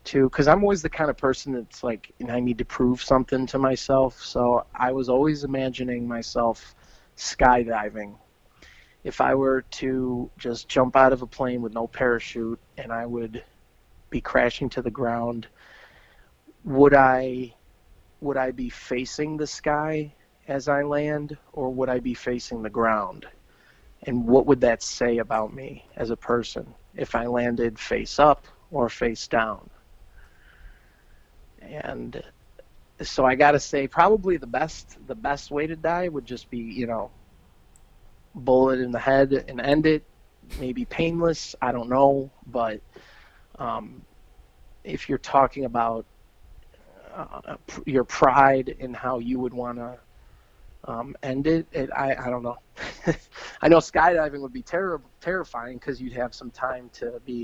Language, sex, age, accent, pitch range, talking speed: English, male, 30-49, American, 120-140 Hz, 155 wpm